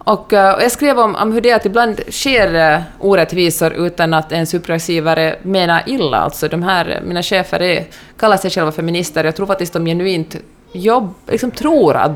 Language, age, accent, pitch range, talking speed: Swedish, 20-39, Norwegian, 165-210 Hz, 185 wpm